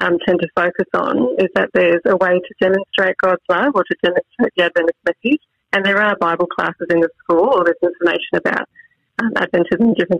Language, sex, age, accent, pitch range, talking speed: English, female, 30-49, Australian, 170-200 Hz, 210 wpm